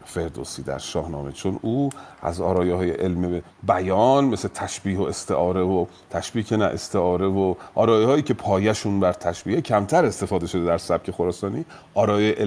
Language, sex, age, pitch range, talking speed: Persian, male, 40-59, 95-125 Hz, 160 wpm